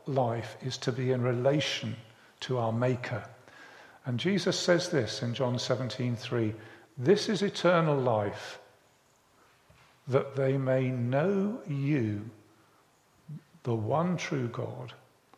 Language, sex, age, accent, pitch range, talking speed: English, male, 50-69, British, 120-155 Hz, 115 wpm